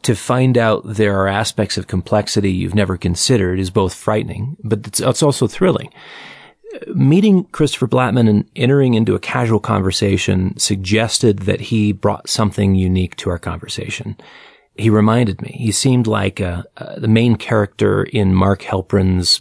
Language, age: English, 30-49